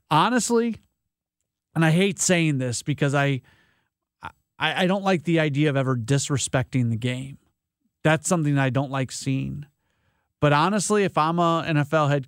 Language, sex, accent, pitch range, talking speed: English, male, American, 125-170 Hz, 165 wpm